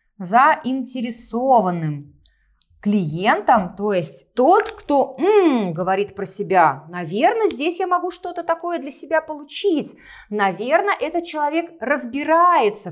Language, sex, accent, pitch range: Russian, female, native, 195-310 Hz